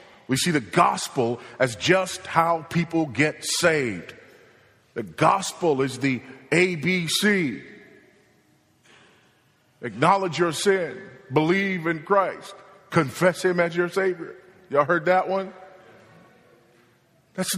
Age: 40-59